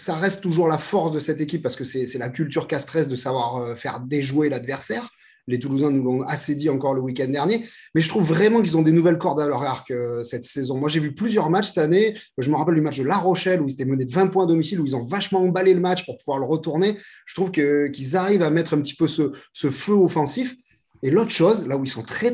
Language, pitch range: French, 135-185 Hz